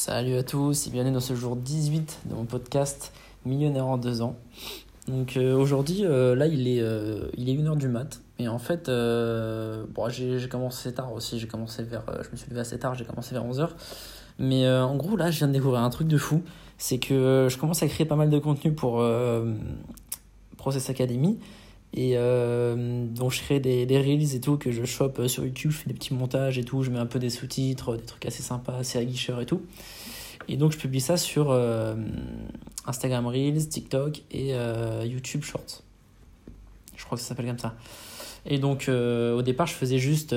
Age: 20-39